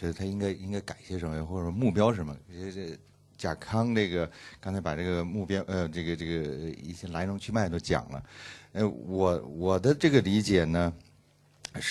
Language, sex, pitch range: Chinese, male, 85-105 Hz